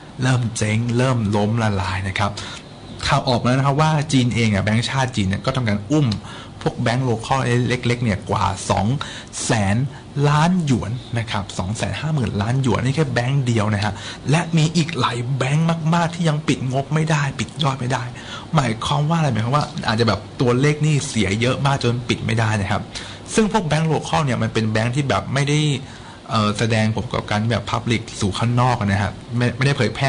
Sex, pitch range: male, 105-130 Hz